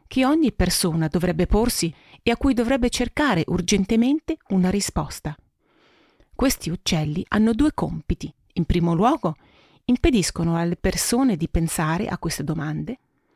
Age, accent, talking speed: 40-59, native, 130 wpm